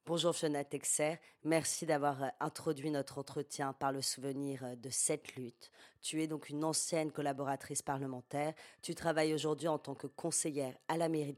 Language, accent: French, French